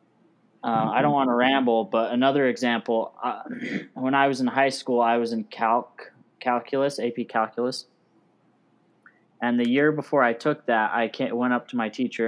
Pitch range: 110-135 Hz